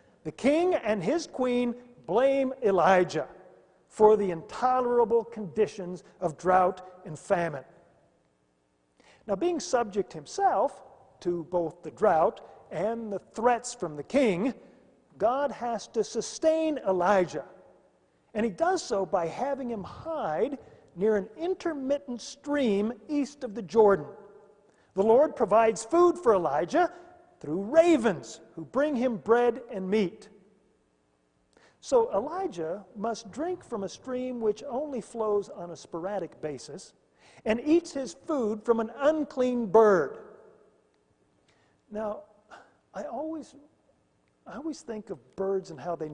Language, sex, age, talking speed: English, male, 50-69, 125 wpm